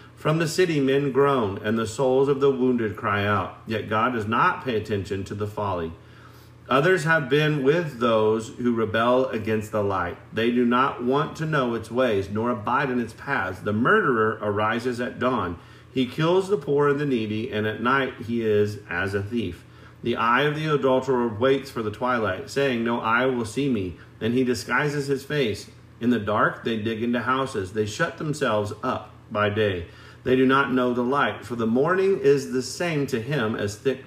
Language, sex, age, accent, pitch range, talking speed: English, male, 40-59, American, 110-135 Hz, 200 wpm